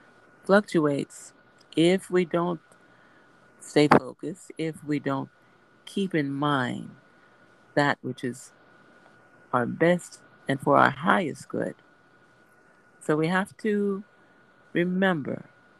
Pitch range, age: 135-180 Hz, 50-69